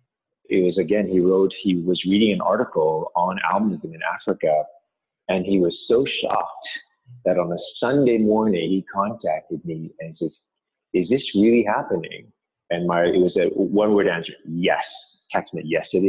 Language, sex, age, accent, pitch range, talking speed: English, male, 30-49, American, 95-150 Hz, 170 wpm